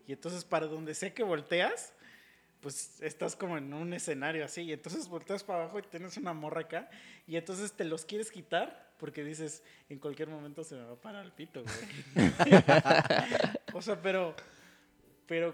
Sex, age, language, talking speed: male, 20-39, Spanish, 180 wpm